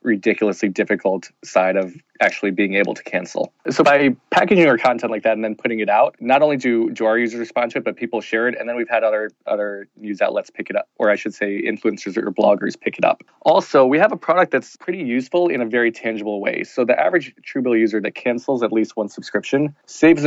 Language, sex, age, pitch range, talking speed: English, male, 20-39, 105-125 Hz, 235 wpm